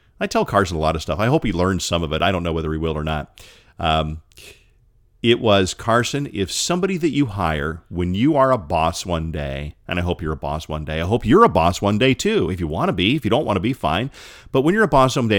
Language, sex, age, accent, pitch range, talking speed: English, male, 40-59, American, 90-120 Hz, 285 wpm